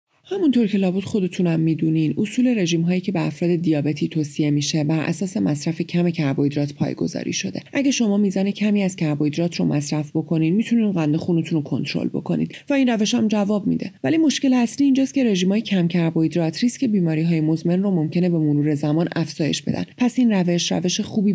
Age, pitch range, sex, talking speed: 30-49, 155-200 Hz, female, 190 wpm